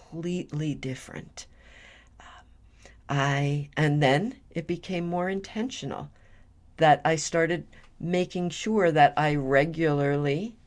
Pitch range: 140-175 Hz